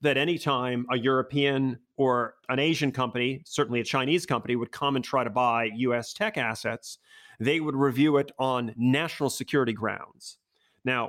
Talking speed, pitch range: 160 wpm, 125-145 Hz